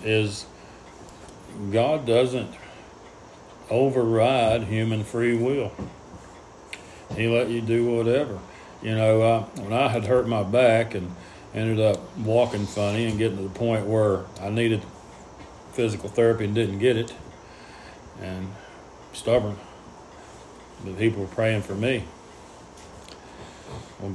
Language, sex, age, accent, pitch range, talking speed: English, male, 40-59, American, 100-120 Hz, 120 wpm